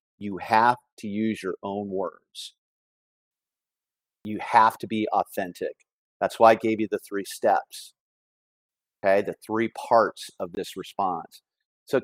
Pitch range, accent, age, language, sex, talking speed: 90-120 Hz, American, 40-59, English, male, 145 wpm